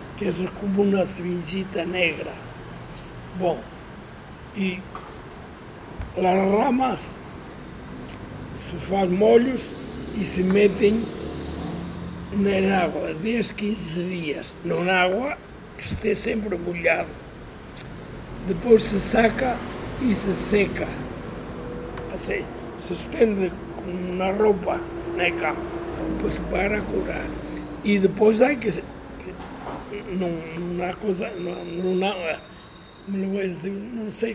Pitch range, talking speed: 180-210 Hz, 100 wpm